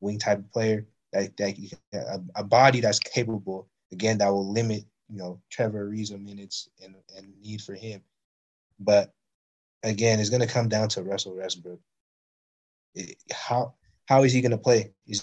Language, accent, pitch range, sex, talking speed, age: English, American, 100-120 Hz, male, 165 wpm, 20-39